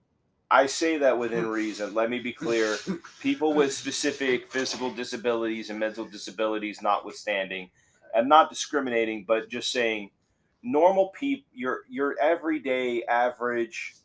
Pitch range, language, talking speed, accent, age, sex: 110-145 Hz, English, 130 wpm, American, 30-49, male